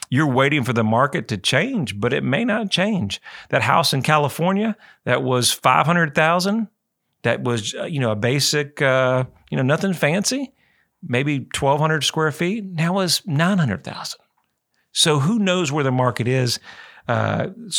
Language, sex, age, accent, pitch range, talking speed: English, male, 50-69, American, 120-160 Hz, 150 wpm